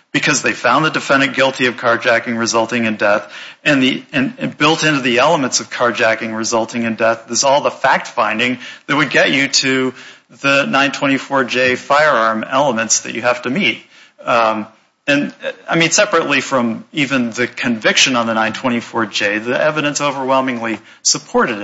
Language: English